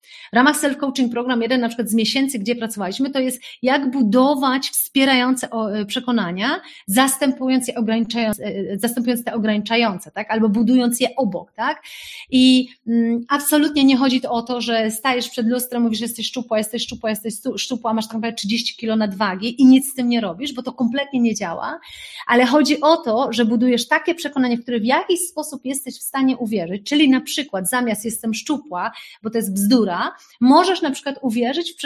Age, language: 30-49, Polish